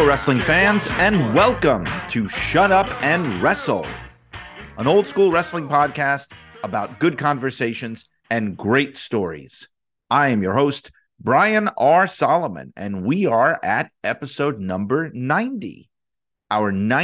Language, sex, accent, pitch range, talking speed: English, male, American, 115-165 Hz, 125 wpm